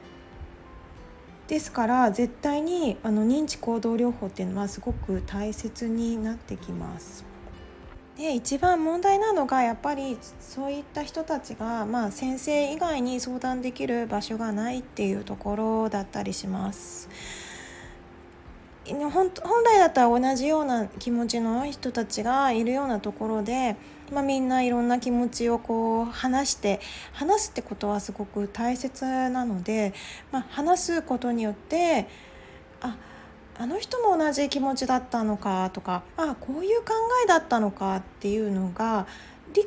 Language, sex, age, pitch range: Japanese, female, 20-39, 210-290 Hz